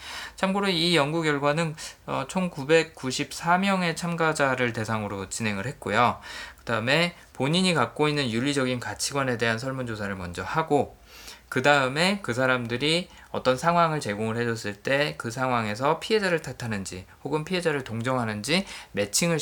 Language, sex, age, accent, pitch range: Korean, male, 20-39, native, 110-165 Hz